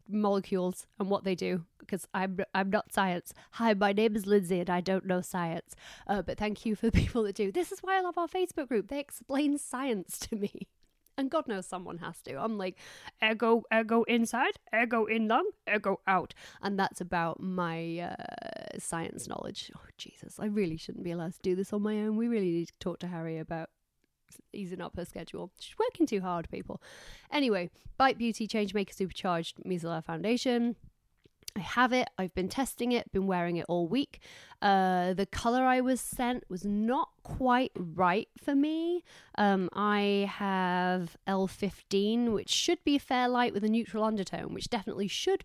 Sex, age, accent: female, 30-49, British